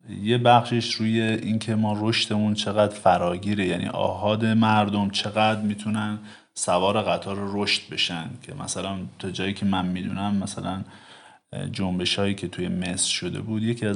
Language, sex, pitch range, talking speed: Persian, male, 95-110 Hz, 140 wpm